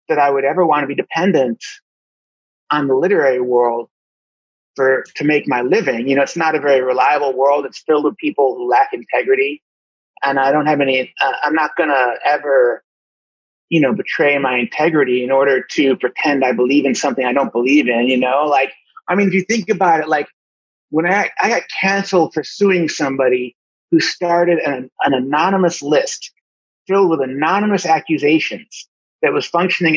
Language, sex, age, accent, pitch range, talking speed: English, male, 30-49, American, 140-235 Hz, 185 wpm